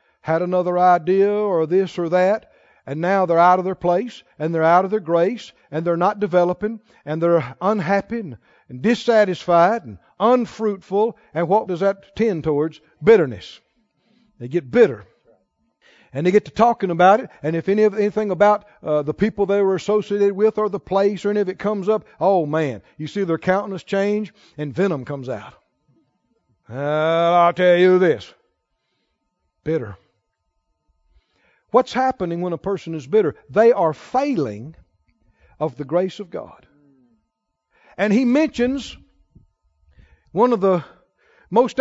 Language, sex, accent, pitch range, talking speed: English, male, American, 170-235 Hz, 155 wpm